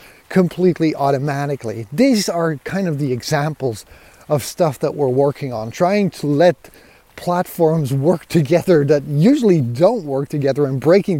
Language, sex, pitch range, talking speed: English, male, 135-180 Hz, 145 wpm